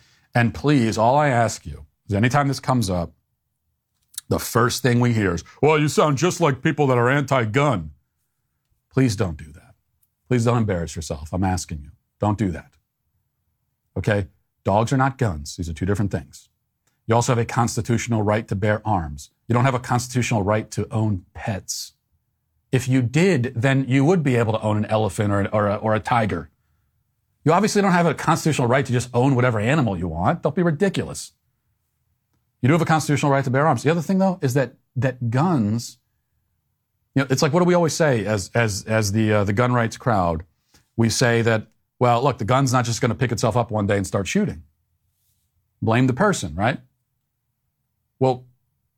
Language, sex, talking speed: English, male, 195 wpm